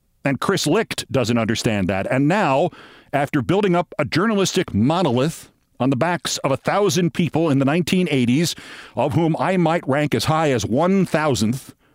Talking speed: 170 wpm